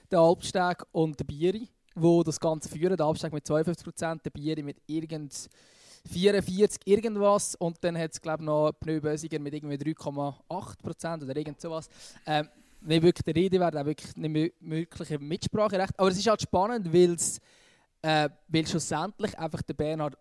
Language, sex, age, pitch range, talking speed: German, male, 20-39, 150-185 Hz, 155 wpm